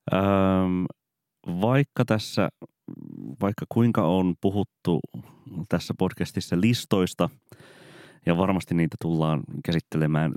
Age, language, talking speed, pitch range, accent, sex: 30-49, Finnish, 85 wpm, 75-95 Hz, native, male